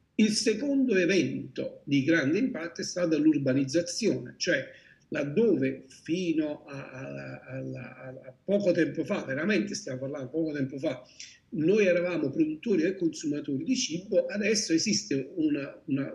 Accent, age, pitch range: native, 50-69, 135-200 Hz